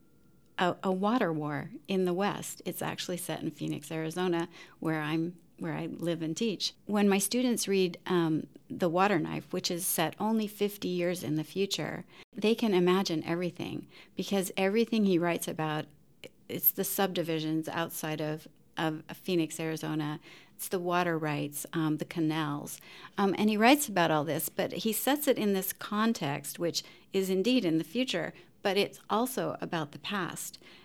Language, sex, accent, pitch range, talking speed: English, female, American, 160-200 Hz, 170 wpm